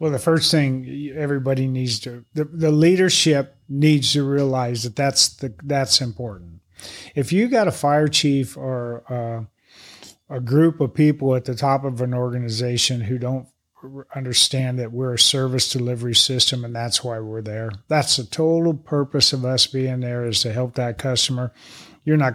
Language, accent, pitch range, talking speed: English, American, 125-150 Hz, 175 wpm